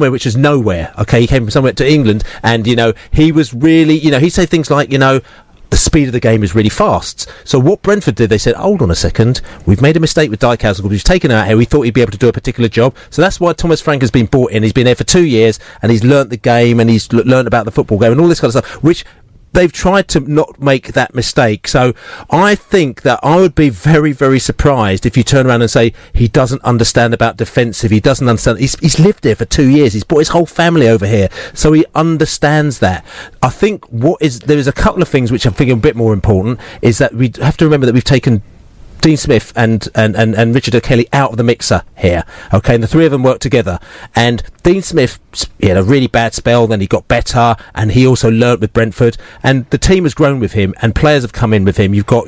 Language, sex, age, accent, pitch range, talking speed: English, male, 40-59, British, 115-150 Hz, 265 wpm